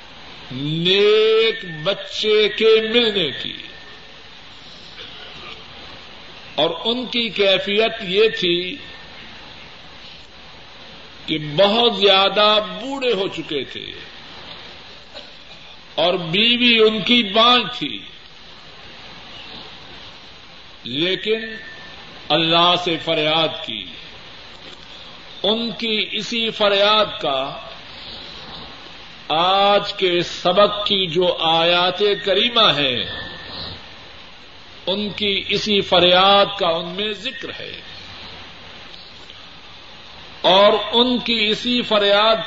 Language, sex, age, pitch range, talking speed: Urdu, male, 50-69, 175-220 Hz, 80 wpm